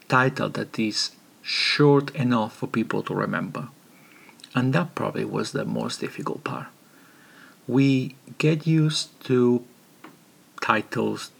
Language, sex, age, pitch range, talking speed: English, male, 50-69, 120-145 Hz, 115 wpm